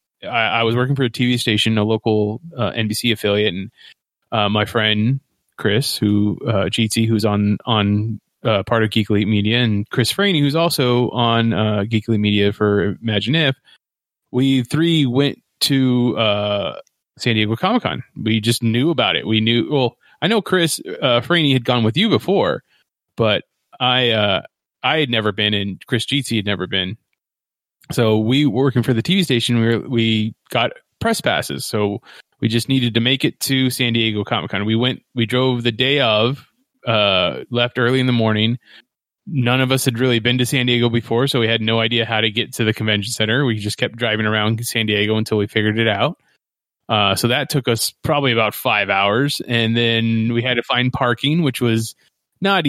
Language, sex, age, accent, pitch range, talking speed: English, male, 20-39, American, 110-130 Hz, 195 wpm